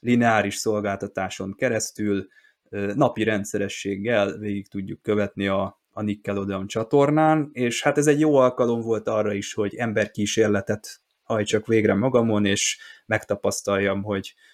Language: Hungarian